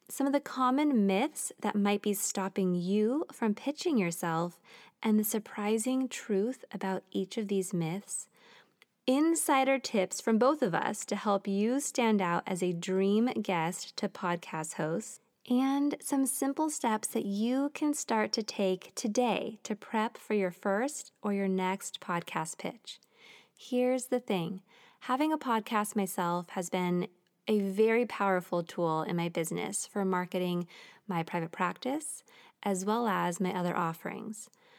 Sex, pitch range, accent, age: female, 190-245 Hz, American, 20-39